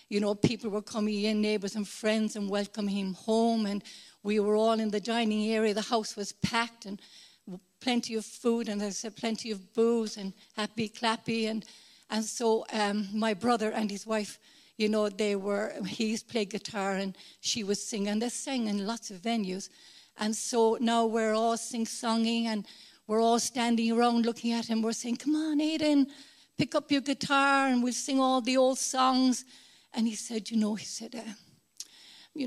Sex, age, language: female, 60-79, English